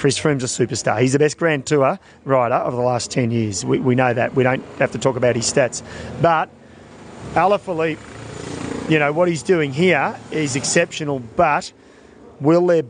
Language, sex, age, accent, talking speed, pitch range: English, male, 30-49, Australian, 185 wpm, 130-180 Hz